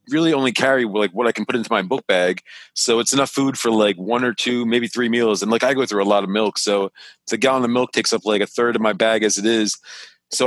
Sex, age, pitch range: male, 30-49, 105-125 Hz